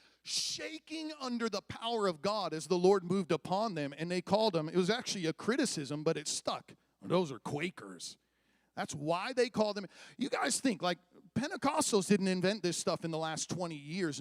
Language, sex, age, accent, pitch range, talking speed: English, male, 40-59, American, 165-225 Hz, 195 wpm